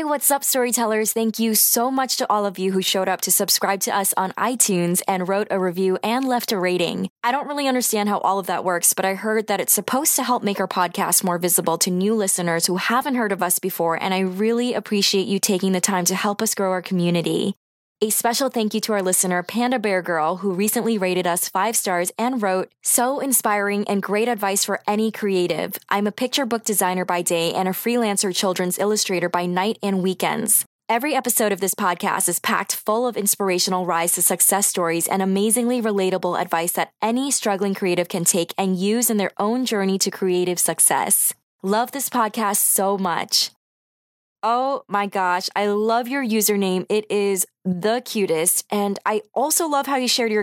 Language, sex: English, female